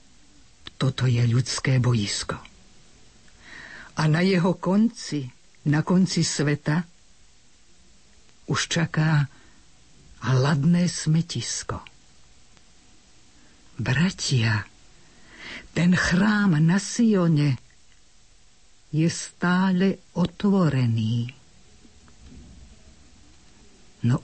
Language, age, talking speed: Slovak, 50-69, 60 wpm